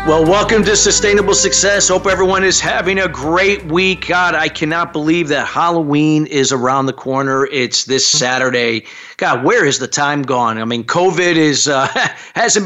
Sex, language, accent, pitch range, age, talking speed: male, English, American, 135-180 Hz, 50-69, 175 wpm